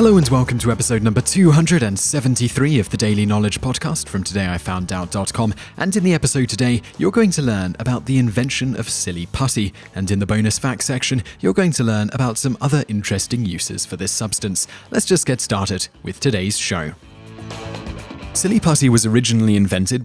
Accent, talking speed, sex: British, 175 wpm, male